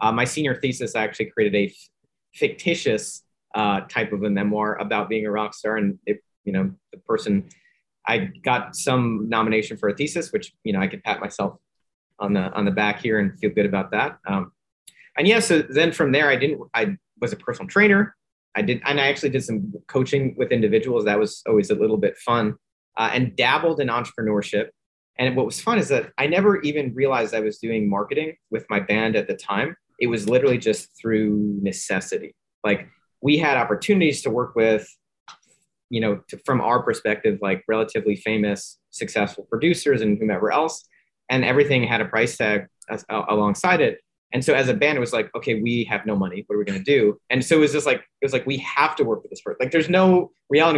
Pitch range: 105-145 Hz